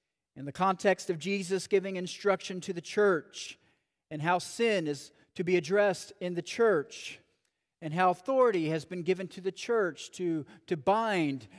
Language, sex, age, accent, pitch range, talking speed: English, male, 40-59, American, 140-180 Hz, 165 wpm